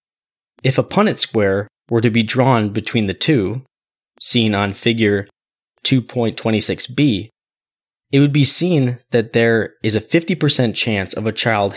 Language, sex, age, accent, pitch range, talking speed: English, male, 20-39, American, 105-130 Hz, 145 wpm